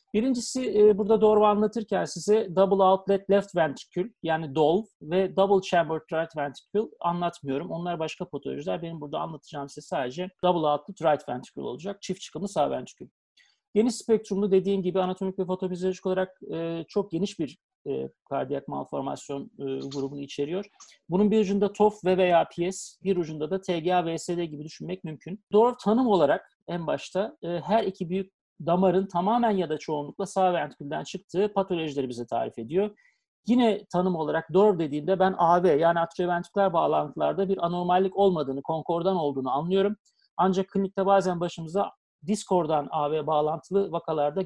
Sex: male